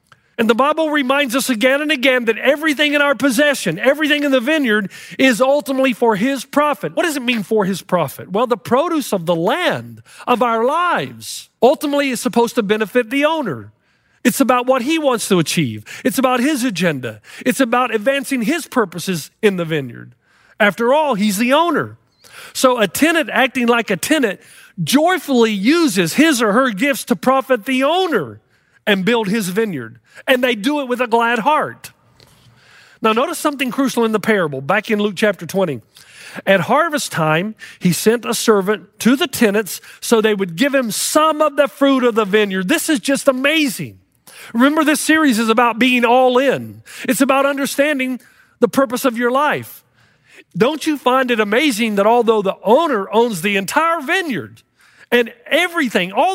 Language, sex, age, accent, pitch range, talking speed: English, male, 40-59, American, 210-280 Hz, 180 wpm